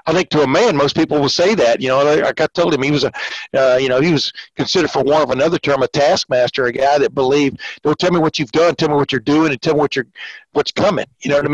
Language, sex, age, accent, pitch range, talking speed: English, male, 60-79, American, 135-170 Hz, 290 wpm